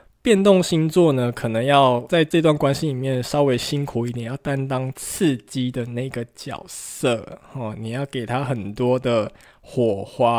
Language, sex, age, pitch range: Chinese, male, 20-39, 125-160 Hz